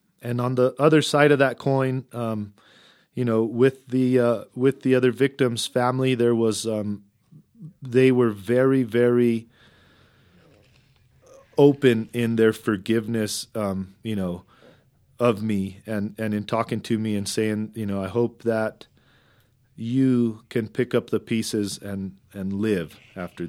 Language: English